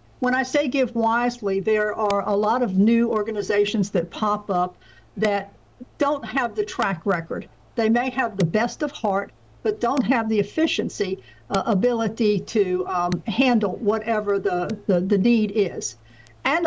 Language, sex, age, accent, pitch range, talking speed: English, female, 60-79, American, 200-240 Hz, 160 wpm